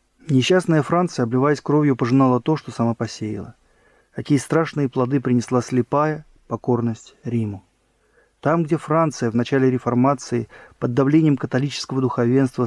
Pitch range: 120-150 Hz